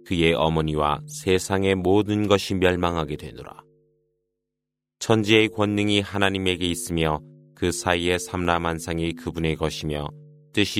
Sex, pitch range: male, 85-105 Hz